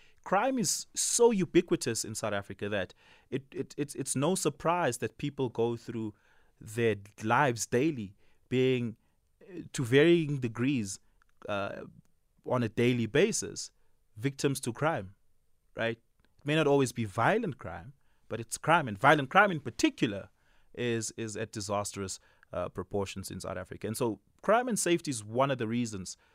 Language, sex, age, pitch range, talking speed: English, male, 30-49, 95-120 Hz, 155 wpm